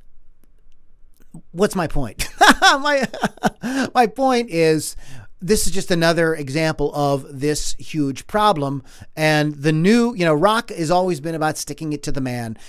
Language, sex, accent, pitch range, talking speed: English, male, American, 145-185 Hz, 145 wpm